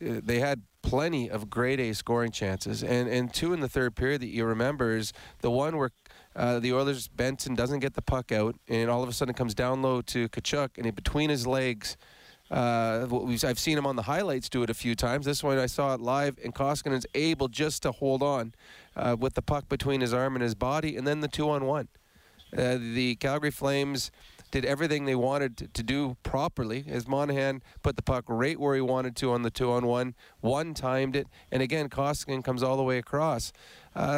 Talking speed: 210 wpm